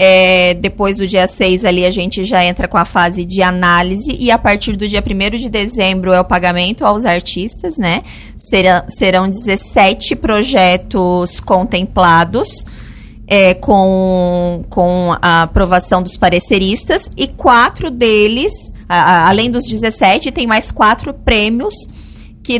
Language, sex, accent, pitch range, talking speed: Portuguese, female, Brazilian, 190-245 Hz, 140 wpm